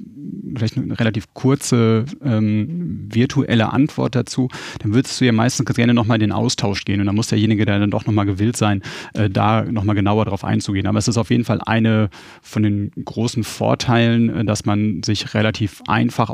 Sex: male